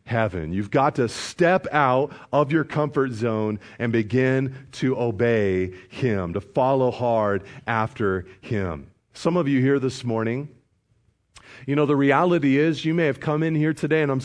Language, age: English, 40-59